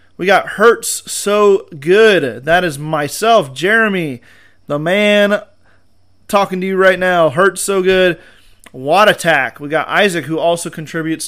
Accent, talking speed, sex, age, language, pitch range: American, 145 wpm, male, 30-49, English, 145-180 Hz